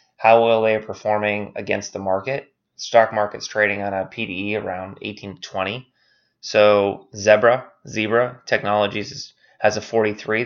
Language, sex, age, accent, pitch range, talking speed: English, male, 20-39, American, 100-115 Hz, 145 wpm